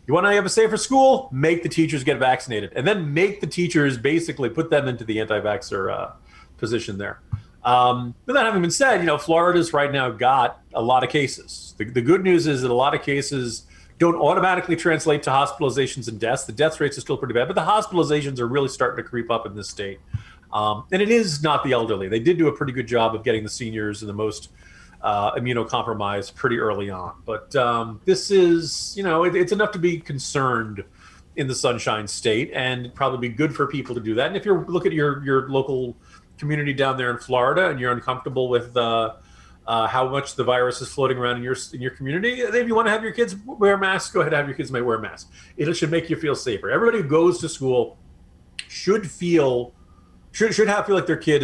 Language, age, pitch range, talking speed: English, 40-59, 120-170 Hz, 230 wpm